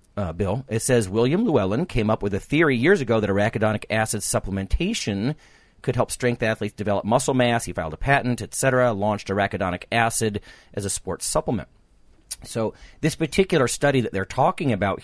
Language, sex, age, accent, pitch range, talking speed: English, male, 40-59, American, 95-120 Hz, 180 wpm